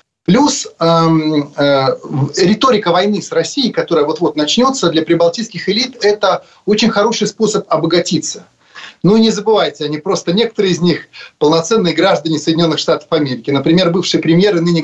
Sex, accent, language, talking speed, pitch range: male, native, Russian, 150 wpm, 150-215 Hz